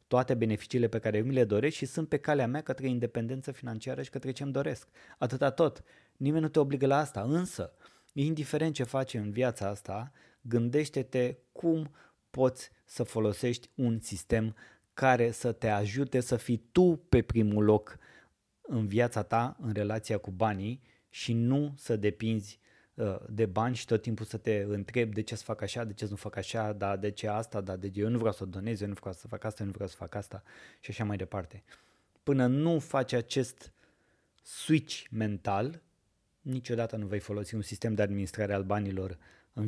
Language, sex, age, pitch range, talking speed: Romanian, male, 20-39, 105-130 Hz, 190 wpm